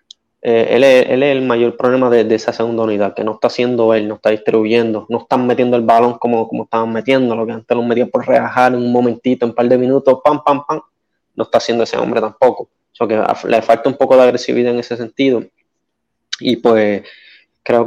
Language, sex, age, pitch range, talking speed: Spanish, male, 20-39, 115-135 Hz, 235 wpm